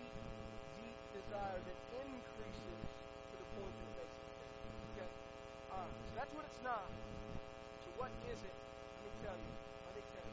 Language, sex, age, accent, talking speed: English, male, 40-59, American, 165 wpm